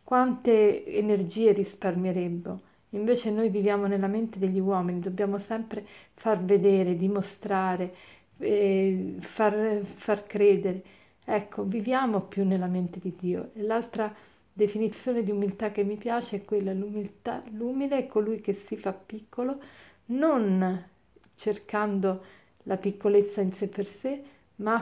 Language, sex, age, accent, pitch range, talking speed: Italian, female, 40-59, native, 195-225 Hz, 125 wpm